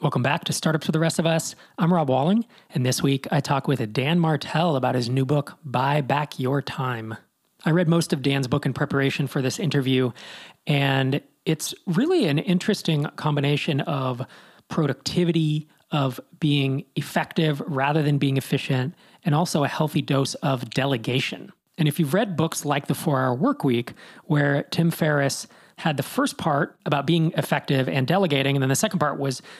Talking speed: 180 wpm